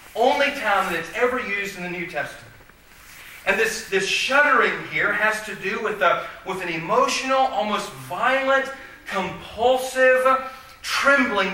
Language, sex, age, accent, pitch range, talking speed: English, male, 40-59, American, 130-215 Hz, 135 wpm